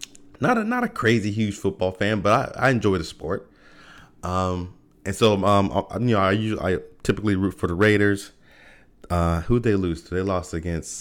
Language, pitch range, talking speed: English, 85-110 Hz, 200 wpm